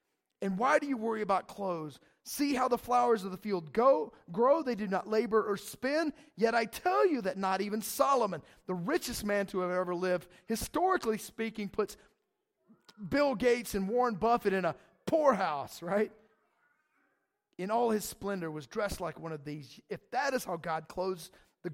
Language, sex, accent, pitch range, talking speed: English, male, American, 175-250 Hz, 180 wpm